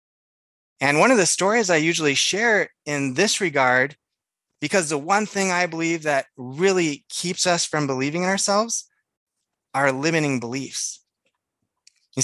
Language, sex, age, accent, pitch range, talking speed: English, male, 20-39, American, 140-185 Hz, 140 wpm